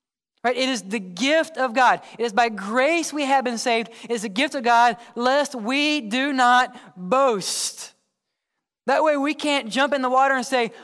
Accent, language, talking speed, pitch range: American, English, 200 wpm, 170-250 Hz